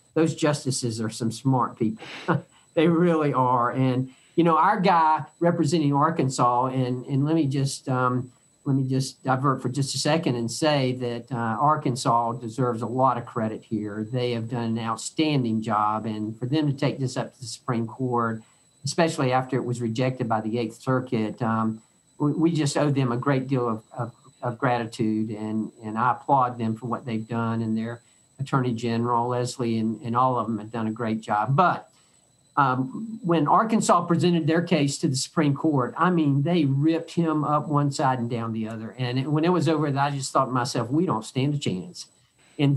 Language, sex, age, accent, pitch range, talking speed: English, male, 50-69, American, 120-155 Hz, 200 wpm